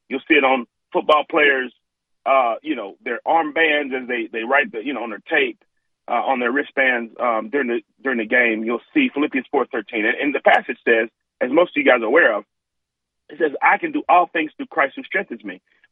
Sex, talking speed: male, 235 wpm